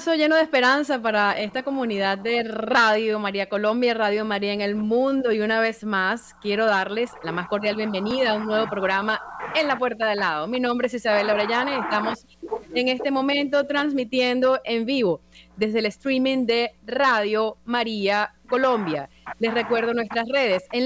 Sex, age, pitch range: female, 30-49, 210-255 Hz